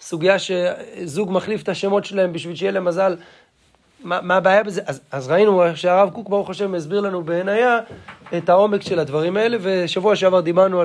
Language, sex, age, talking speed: Hebrew, male, 20-39, 165 wpm